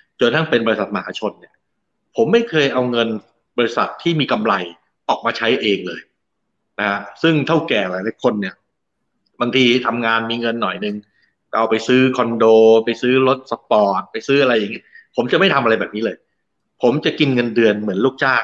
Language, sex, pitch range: Thai, male, 105-135 Hz